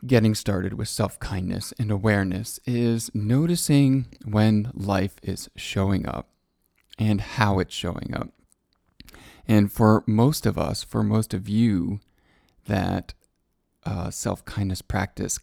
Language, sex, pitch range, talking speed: English, male, 95-110 Hz, 120 wpm